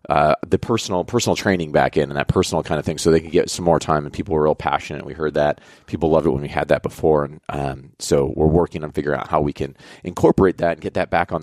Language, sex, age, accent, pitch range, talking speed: English, male, 30-49, American, 75-95 Hz, 285 wpm